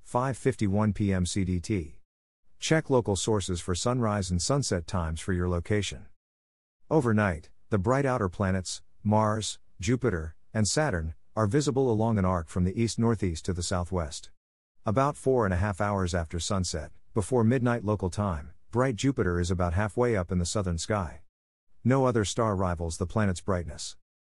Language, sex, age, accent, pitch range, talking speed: English, male, 50-69, American, 90-115 Hz, 155 wpm